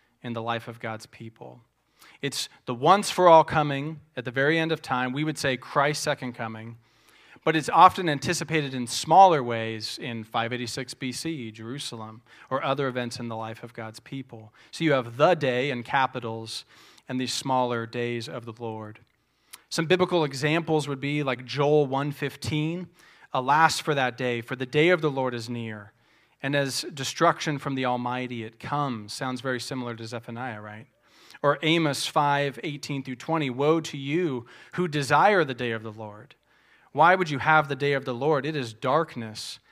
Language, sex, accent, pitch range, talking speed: English, male, American, 120-155 Hz, 180 wpm